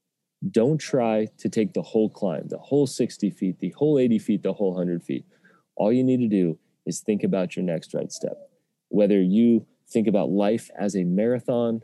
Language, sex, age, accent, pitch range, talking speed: English, male, 30-49, American, 95-115 Hz, 200 wpm